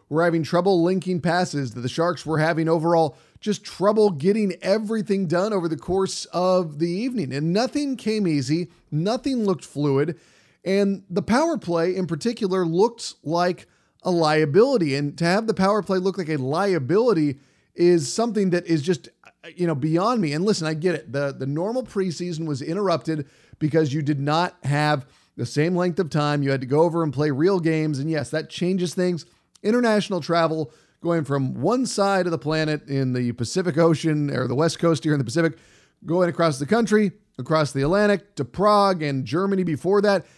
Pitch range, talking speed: 150-190 Hz, 190 wpm